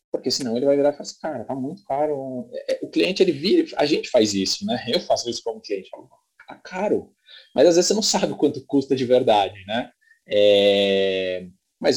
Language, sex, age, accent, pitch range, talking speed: Portuguese, male, 20-39, Brazilian, 100-150 Hz, 220 wpm